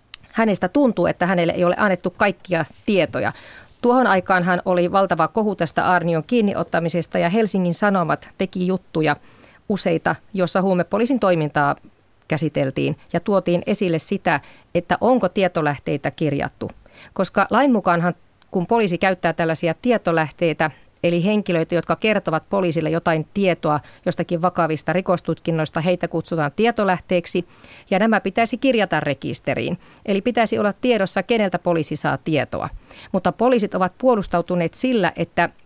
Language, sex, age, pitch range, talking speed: Finnish, female, 40-59, 165-200 Hz, 130 wpm